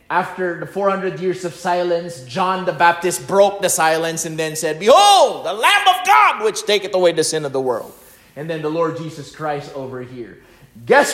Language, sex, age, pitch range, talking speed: English, male, 30-49, 145-220 Hz, 200 wpm